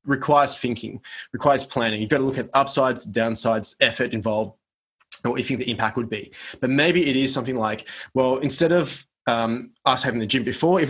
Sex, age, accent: male, 20-39, Australian